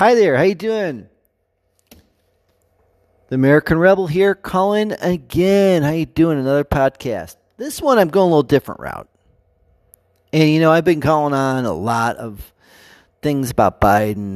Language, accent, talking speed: English, American, 155 wpm